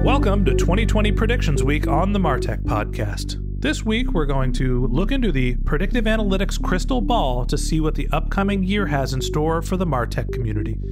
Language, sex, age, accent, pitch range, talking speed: English, male, 30-49, American, 135-185 Hz, 185 wpm